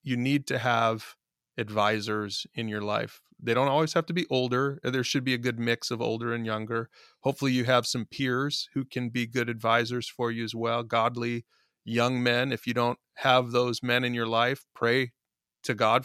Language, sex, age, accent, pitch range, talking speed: English, male, 30-49, American, 115-130 Hz, 200 wpm